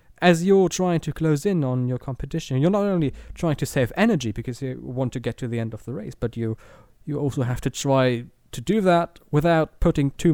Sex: male